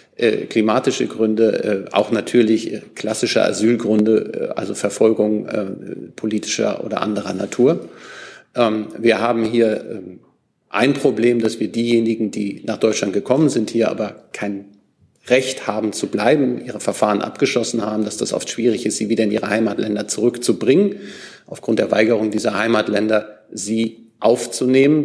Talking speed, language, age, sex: 130 wpm, German, 40-59, male